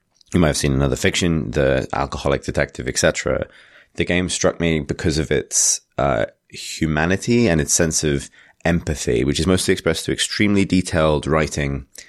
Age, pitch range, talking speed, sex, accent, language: 20-39, 75-85 Hz, 160 wpm, male, British, English